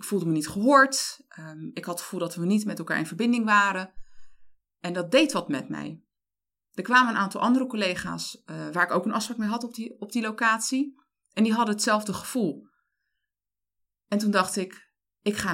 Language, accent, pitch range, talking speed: Dutch, Dutch, 180-230 Hz, 210 wpm